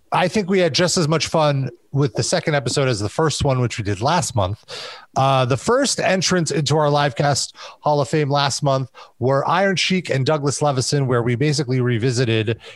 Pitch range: 125-175 Hz